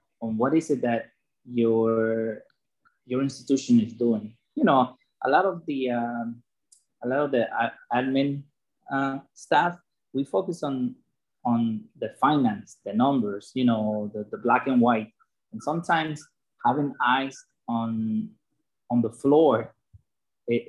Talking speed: 140 wpm